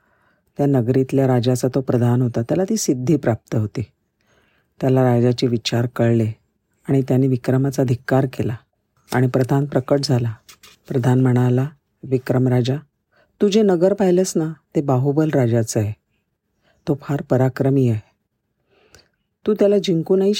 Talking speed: 110 wpm